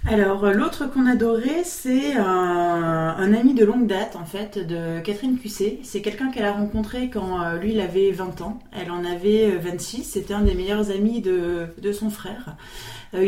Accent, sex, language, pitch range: French, female, French, 185-225 Hz